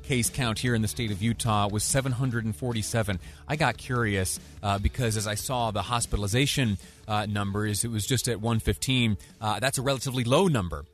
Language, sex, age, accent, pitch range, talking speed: English, male, 30-49, American, 95-115 Hz, 180 wpm